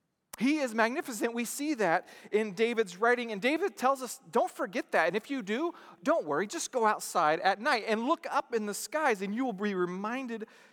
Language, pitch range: English, 195-275 Hz